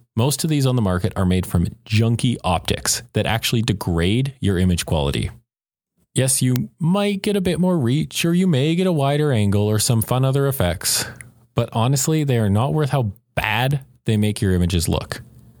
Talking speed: 190 wpm